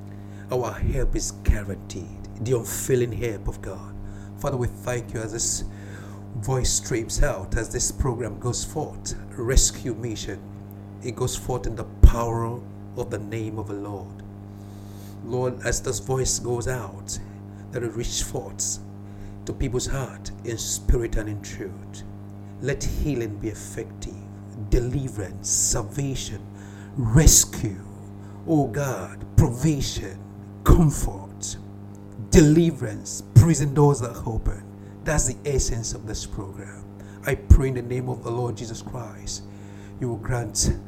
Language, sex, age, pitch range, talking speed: English, male, 60-79, 100-120 Hz, 135 wpm